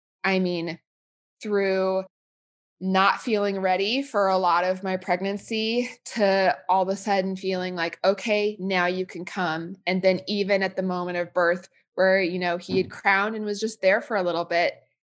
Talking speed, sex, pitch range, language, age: 185 wpm, female, 185-210 Hz, English, 20-39